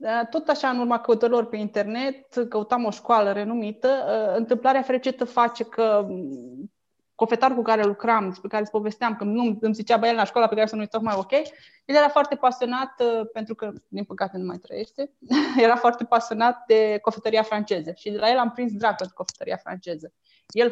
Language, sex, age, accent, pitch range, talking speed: Romanian, female, 20-39, native, 200-245 Hz, 190 wpm